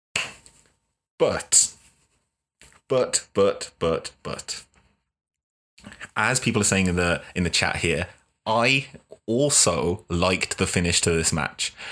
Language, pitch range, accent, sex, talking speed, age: English, 85-105 Hz, British, male, 115 wpm, 30-49